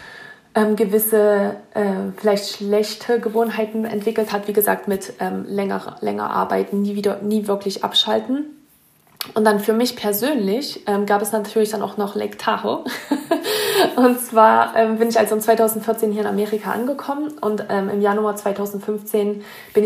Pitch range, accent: 205-230 Hz, German